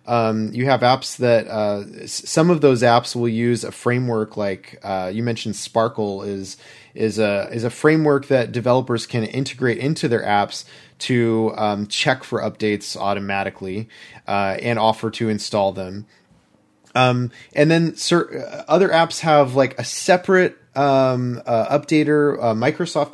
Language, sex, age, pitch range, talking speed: English, male, 30-49, 110-140 Hz, 150 wpm